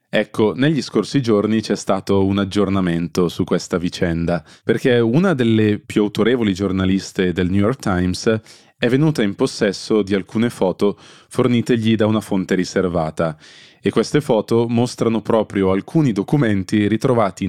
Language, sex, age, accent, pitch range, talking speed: Italian, male, 20-39, native, 95-120 Hz, 140 wpm